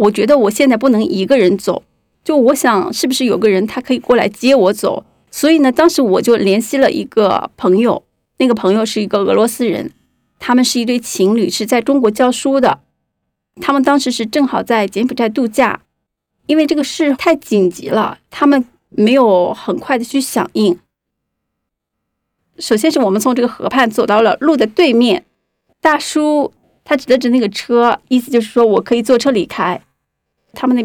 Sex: female